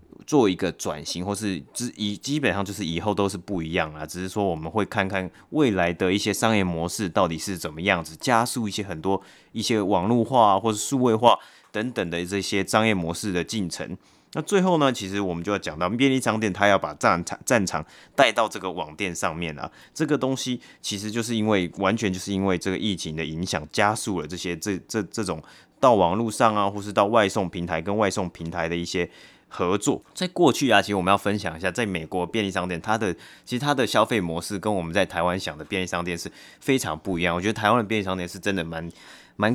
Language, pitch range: Chinese, 85-110 Hz